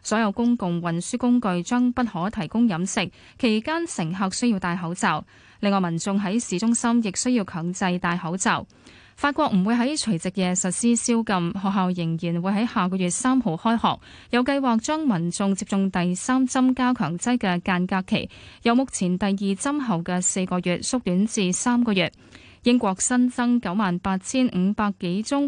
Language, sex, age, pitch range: Chinese, female, 10-29, 180-245 Hz